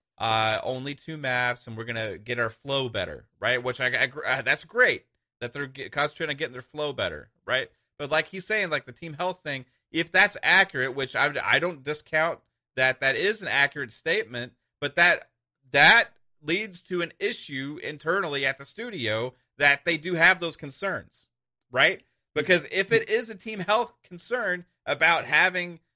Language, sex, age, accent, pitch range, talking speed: English, male, 30-49, American, 125-165 Hz, 180 wpm